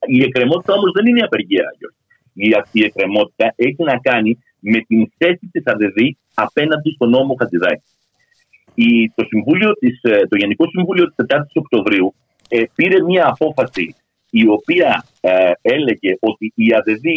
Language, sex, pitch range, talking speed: Greek, male, 110-170 Hz, 140 wpm